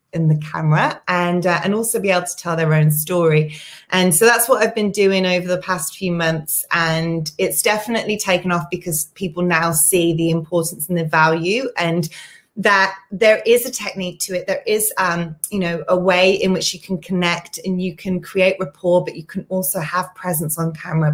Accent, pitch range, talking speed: British, 165-190 Hz, 205 wpm